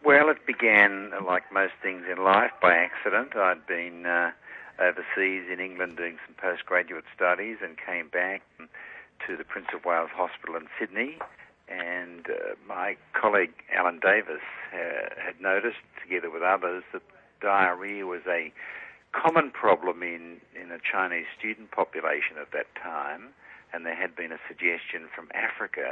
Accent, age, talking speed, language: Australian, 60-79, 155 wpm, English